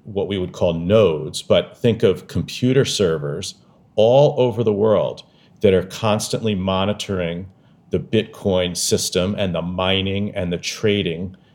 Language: English